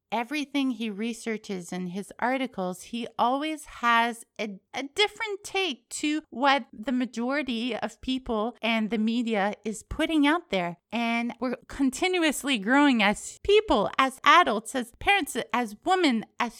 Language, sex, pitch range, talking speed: English, female, 215-275 Hz, 140 wpm